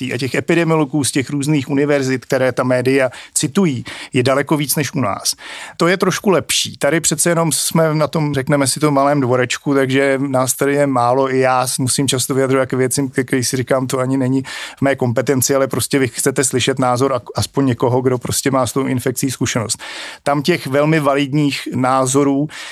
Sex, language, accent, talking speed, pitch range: male, Czech, native, 195 wpm, 130-145 Hz